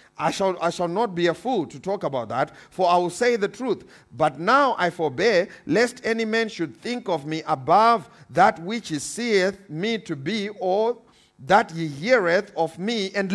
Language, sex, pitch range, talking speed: English, male, 165-220 Hz, 200 wpm